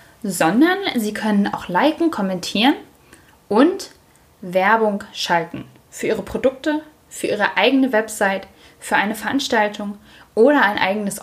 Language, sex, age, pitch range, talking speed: German, female, 10-29, 190-250 Hz, 120 wpm